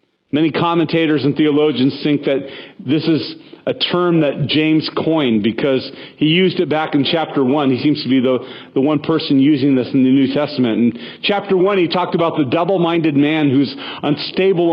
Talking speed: 185 wpm